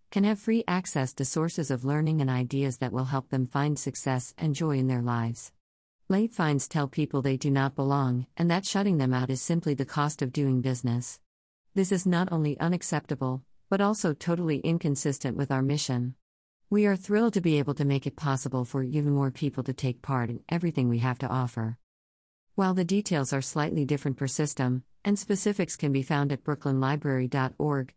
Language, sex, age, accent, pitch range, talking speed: English, female, 50-69, American, 130-160 Hz, 195 wpm